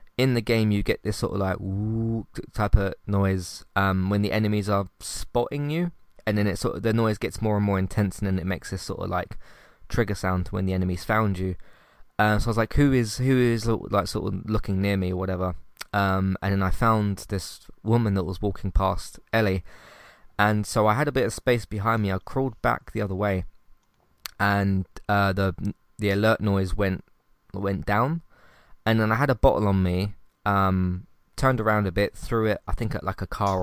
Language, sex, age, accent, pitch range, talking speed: English, male, 20-39, British, 95-115 Hz, 220 wpm